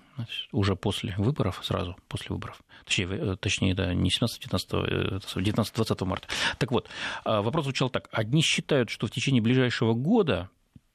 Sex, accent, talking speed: male, native, 130 wpm